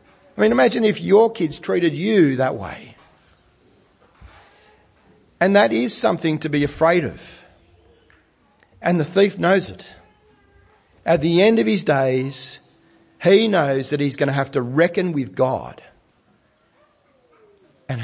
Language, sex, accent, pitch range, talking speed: English, male, Australian, 135-190 Hz, 135 wpm